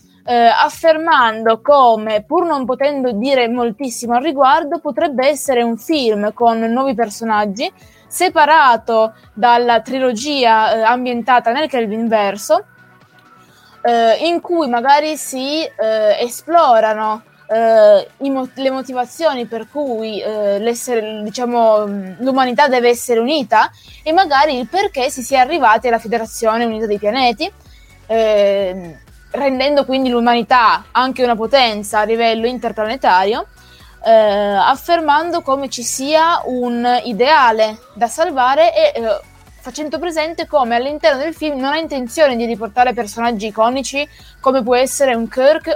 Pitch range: 225-295 Hz